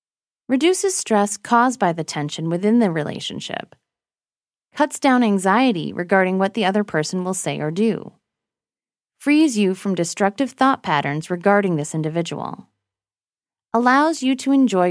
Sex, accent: female, American